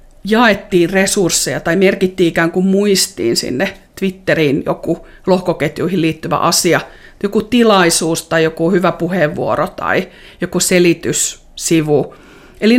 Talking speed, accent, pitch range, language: 110 wpm, native, 165-195 Hz, Finnish